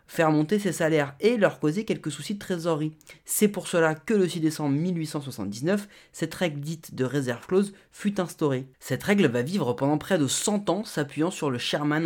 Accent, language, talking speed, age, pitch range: French, French, 200 wpm, 30-49, 140-190 Hz